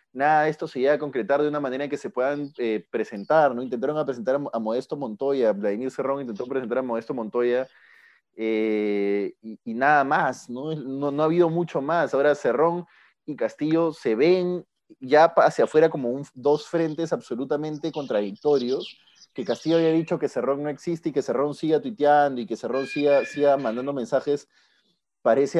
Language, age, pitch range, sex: Spanish, 30-49, 125-155 Hz, male